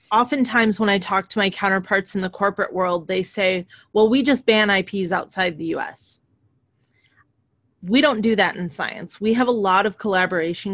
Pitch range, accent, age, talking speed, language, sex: 175-215 Hz, American, 30-49, 185 wpm, English, female